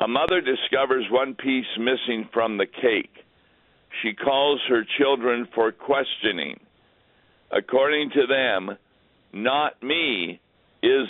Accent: American